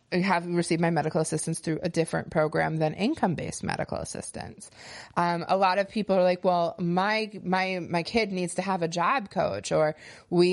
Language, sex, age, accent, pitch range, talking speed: English, female, 30-49, American, 170-205 Hz, 195 wpm